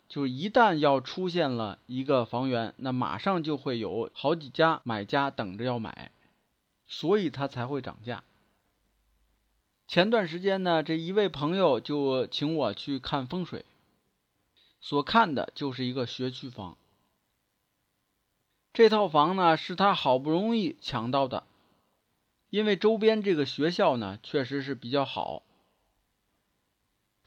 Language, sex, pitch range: Chinese, male, 130-195 Hz